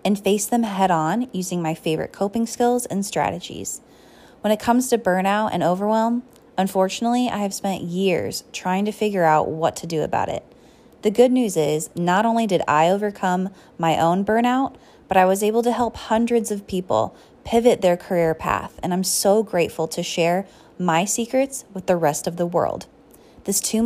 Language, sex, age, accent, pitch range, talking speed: English, female, 20-39, American, 170-220 Hz, 185 wpm